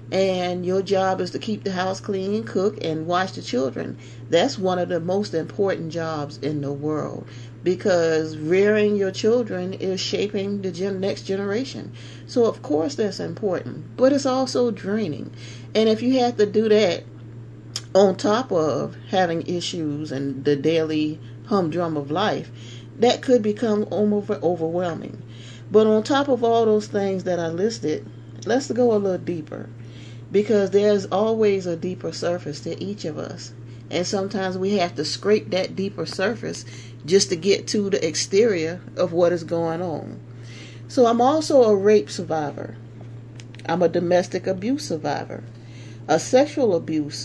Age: 40-59